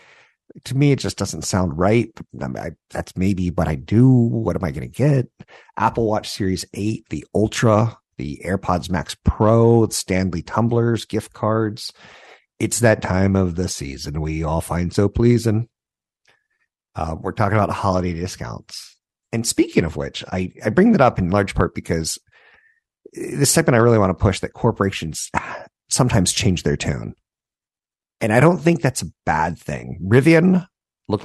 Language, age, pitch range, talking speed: English, 50-69, 90-115 Hz, 165 wpm